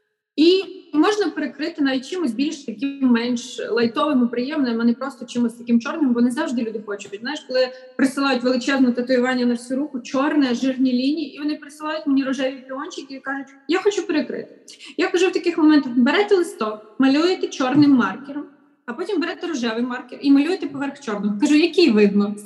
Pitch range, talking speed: 250-320 Hz, 175 wpm